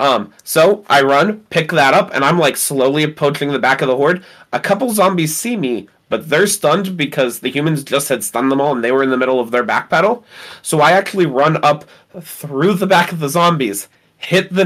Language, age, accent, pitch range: English, 20-39, American, 130-160 Hz